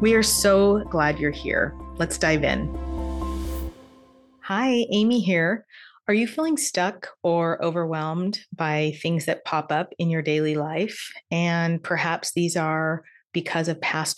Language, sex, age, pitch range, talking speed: English, female, 30-49, 160-195 Hz, 145 wpm